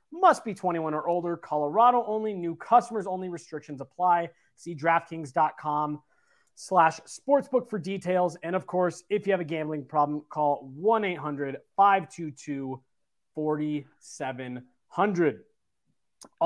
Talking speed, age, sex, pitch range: 105 wpm, 30-49, male, 160-210 Hz